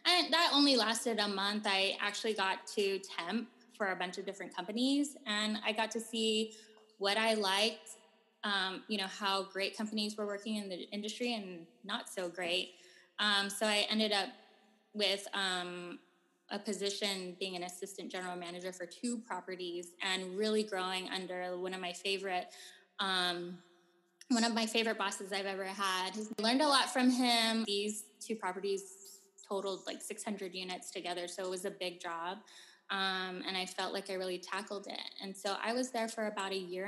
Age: 10-29